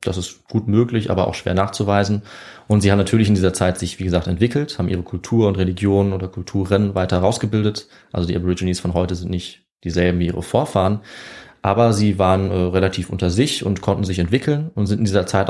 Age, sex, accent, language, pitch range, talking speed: 30-49, male, German, German, 90-110 Hz, 215 wpm